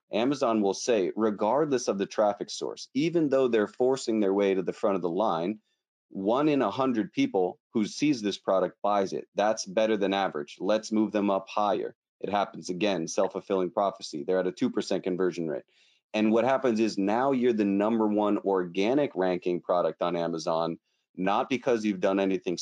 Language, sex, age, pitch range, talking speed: English, male, 30-49, 95-110 Hz, 185 wpm